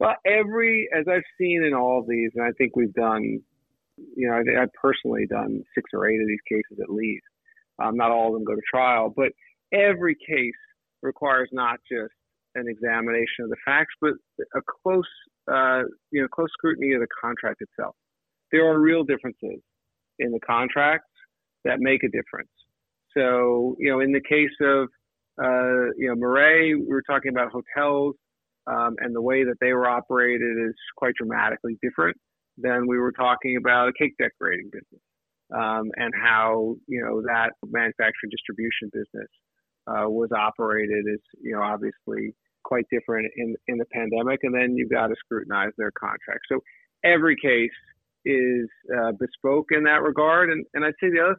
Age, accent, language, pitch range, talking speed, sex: 40-59, American, English, 120-150 Hz, 175 wpm, male